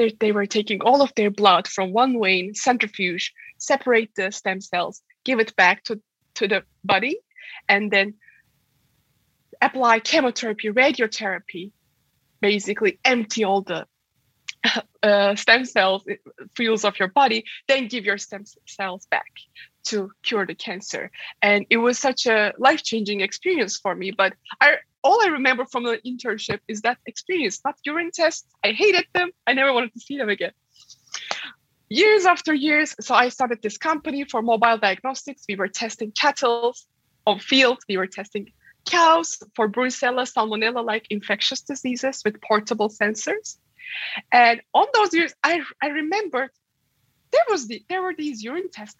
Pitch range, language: 205-270 Hz, English